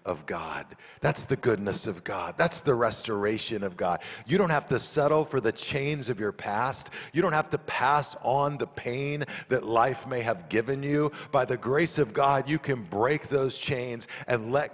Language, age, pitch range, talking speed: English, 50-69, 105-135 Hz, 200 wpm